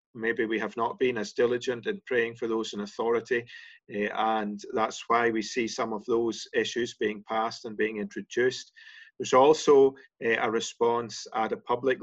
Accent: British